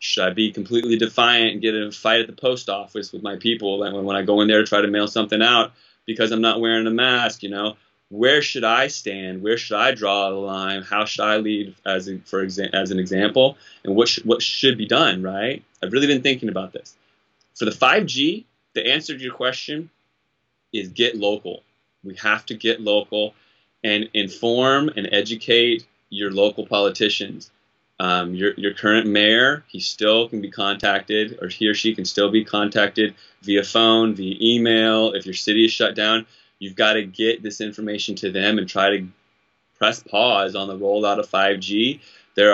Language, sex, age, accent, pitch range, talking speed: English, male, 20-39, American, 100-115 Hz, 200 wpm